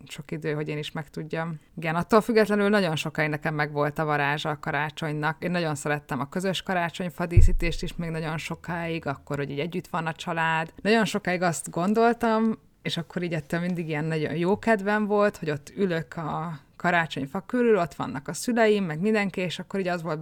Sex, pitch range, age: female, 155-190 Hz, 20-39